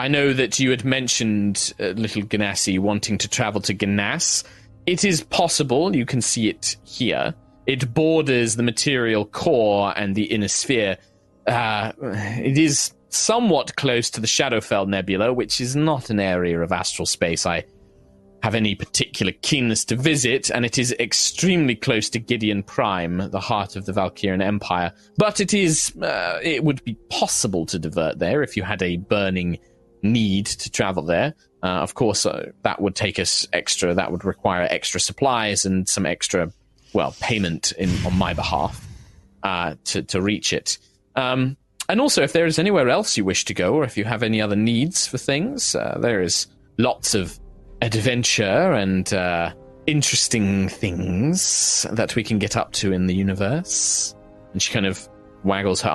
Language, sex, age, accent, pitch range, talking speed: English, male, 20-39, British, 95-125 Hz, 170 wpm